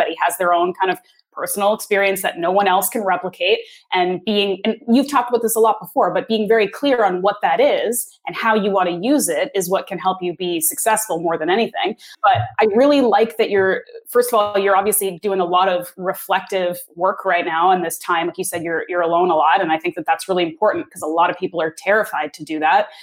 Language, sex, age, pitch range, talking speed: English, female, 20-39, 180-225 Hz, 255 wpm